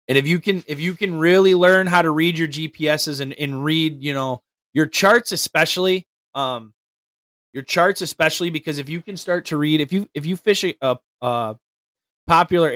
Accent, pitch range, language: American, 135-165 Hz, English